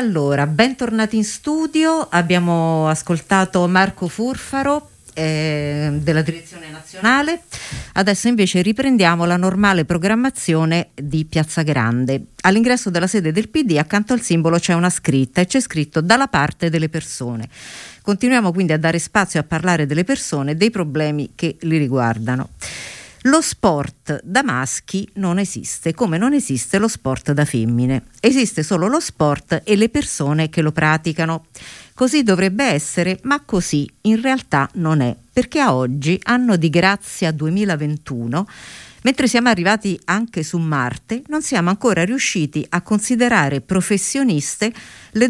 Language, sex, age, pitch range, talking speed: Italian, female, 50-69, 150-220 Hz, 140 wpm